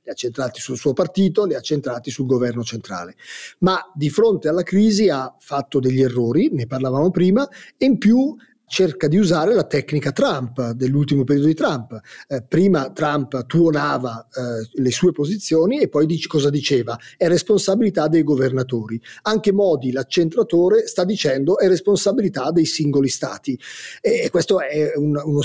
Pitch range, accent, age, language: 140-180 Hz, native, 40-59, Italian